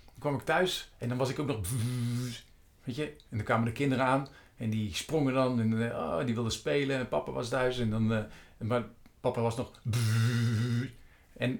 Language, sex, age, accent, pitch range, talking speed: Dutch, male, 50-69, Dutch, 110-135 Hz, 195 wpm